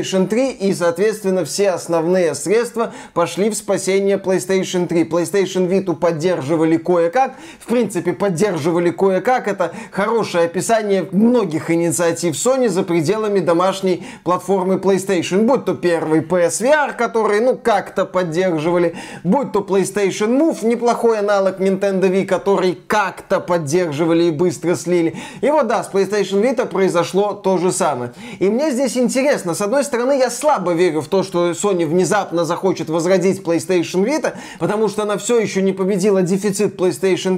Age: 20-39